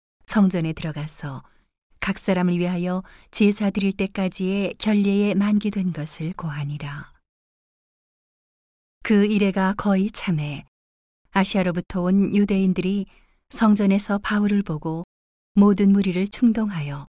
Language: Korean